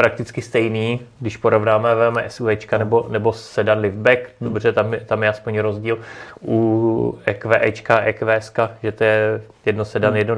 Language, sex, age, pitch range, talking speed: Czech, male, 30-49, 115-130 Hz, 145 wpm